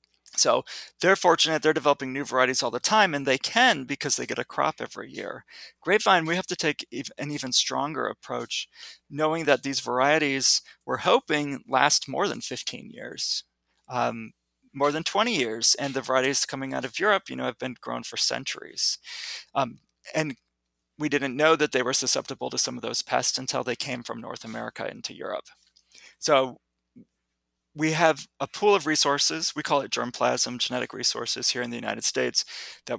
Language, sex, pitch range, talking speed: English, male, 110-150 Hz, 180 wpm